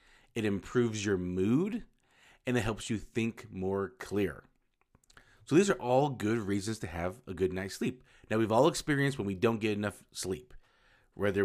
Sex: male